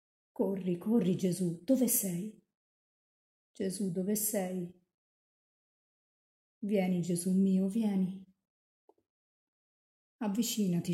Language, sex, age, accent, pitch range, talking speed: Italian, female, 50-69, native, 160-205 Hz, 70 wpm